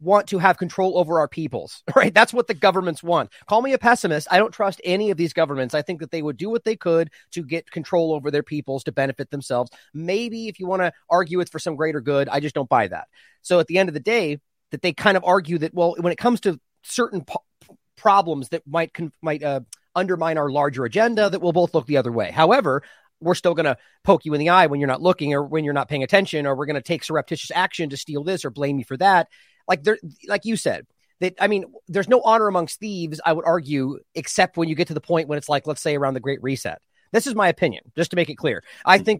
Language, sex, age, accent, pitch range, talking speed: English, male, 30-49, American, 145-185 Hz, 260 wpm